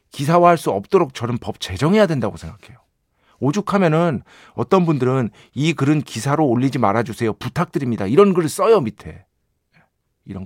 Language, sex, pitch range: Korean, male, 105-165 Hz